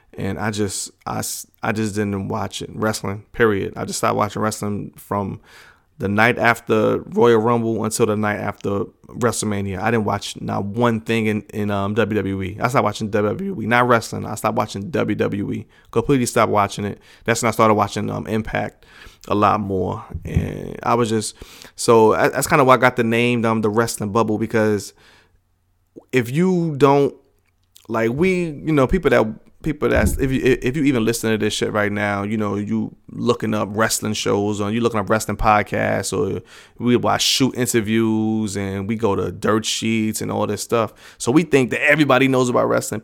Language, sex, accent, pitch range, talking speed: English, male, American, 105-120 Hz, 190 wpm